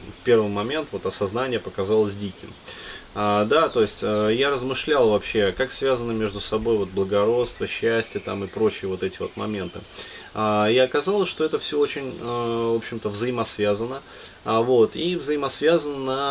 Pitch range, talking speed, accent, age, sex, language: 105-130 Hz, 160 wpm, native, 20-39, male, Russian